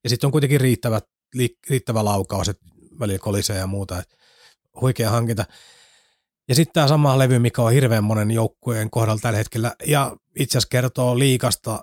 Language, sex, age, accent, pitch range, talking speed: Finnish, male, 30-49, native, 105-120 Hz, 155 wpm